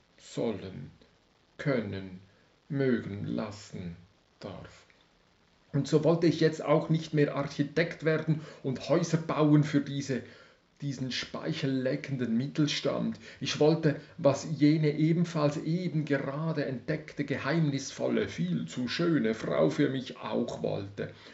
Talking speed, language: 110 wpm, German